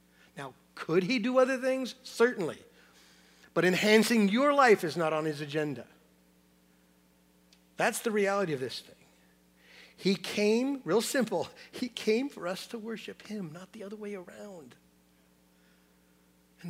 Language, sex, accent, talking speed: English, male, American, 140 wpm